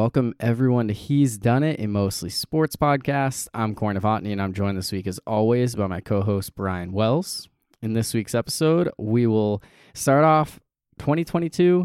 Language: English